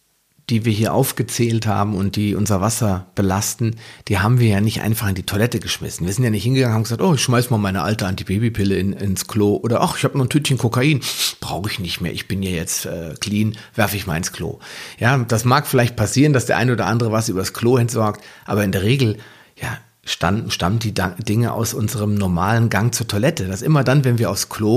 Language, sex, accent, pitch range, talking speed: German, male, German, 105-125 Hz, 235 wpm